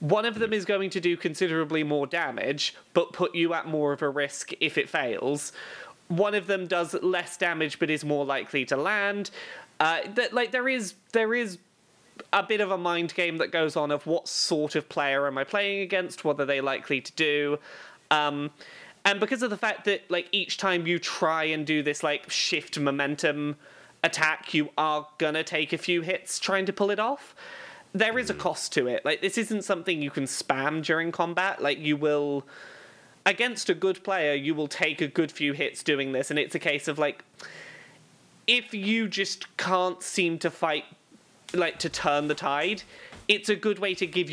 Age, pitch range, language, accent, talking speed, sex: 20-39, 150-200 Hz, English, British, 205 wpm, male